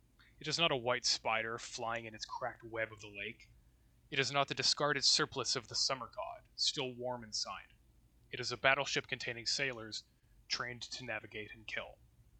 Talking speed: 185 wpm